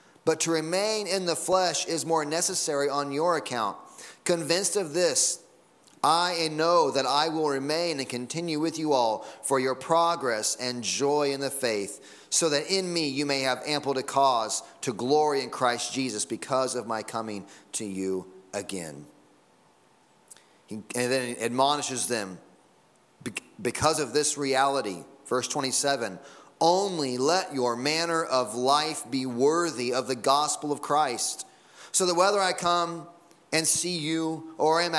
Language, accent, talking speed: English, American, 155 wpm